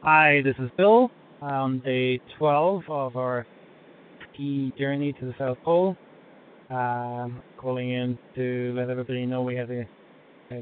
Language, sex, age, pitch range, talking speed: English, male, 20-39, 115-130 Hz, 145 wpm